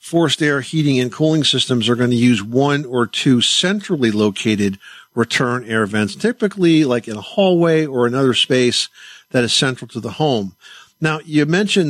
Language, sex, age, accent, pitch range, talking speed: English, male, 50-69, American, 115-145 Hz, 175 wpm